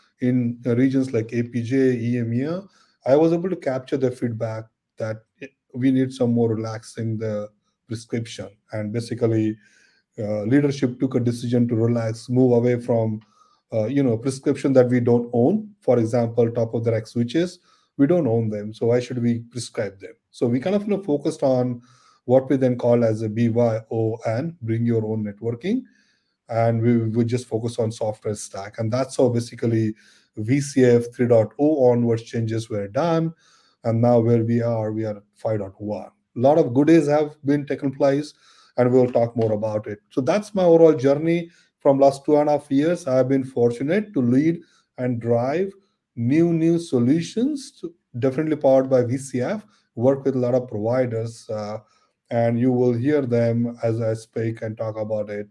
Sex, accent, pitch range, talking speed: male, Indian, 115-140 Hz, 175 wpm